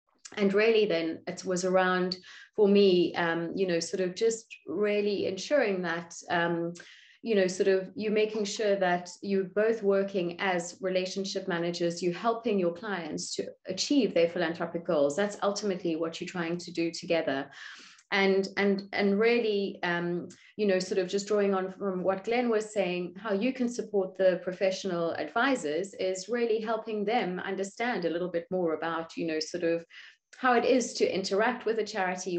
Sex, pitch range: female, 175-210 Hz